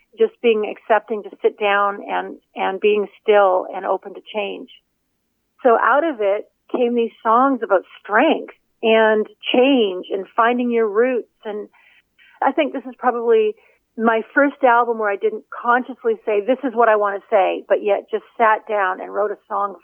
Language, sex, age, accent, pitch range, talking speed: English, female, 40-59, American, 205-240 Hz, 180 wpm